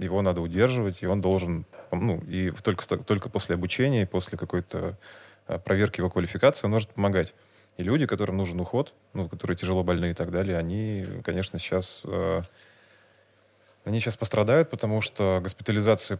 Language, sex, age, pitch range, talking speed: Russian, male, 20-39, 90-105 Hz, 155 wpm